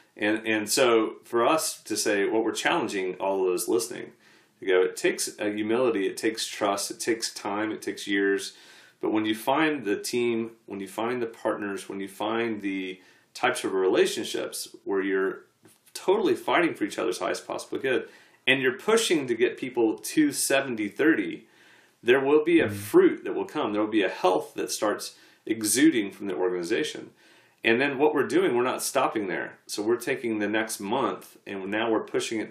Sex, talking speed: male, 190 wpm